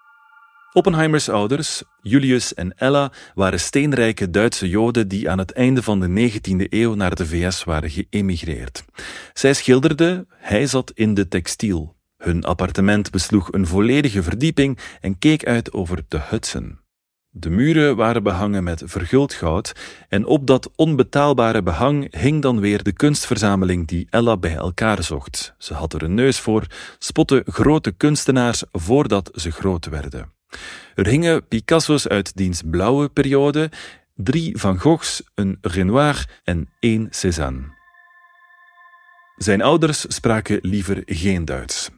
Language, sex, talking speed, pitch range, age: Dutch, male, 140 wpm, 90-135 Hz, 40-59